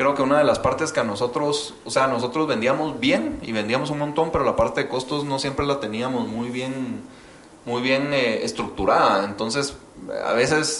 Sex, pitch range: male, 120-165 Hz